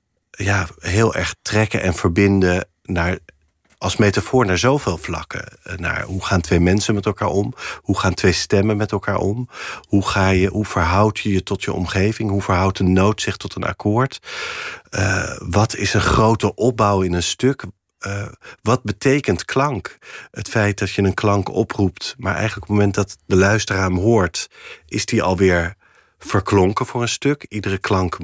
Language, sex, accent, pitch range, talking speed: Dutch, male, Dutch, 95-110 Hz, 180 wpm